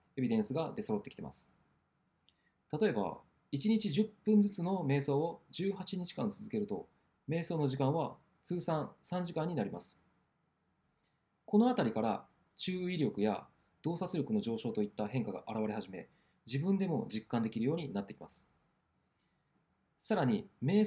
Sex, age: male, 20-39